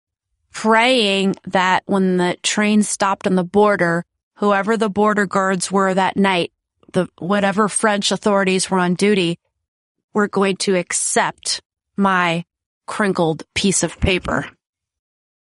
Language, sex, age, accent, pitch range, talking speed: English, female, 30-49, American, 170-205 Hz, 125 wpm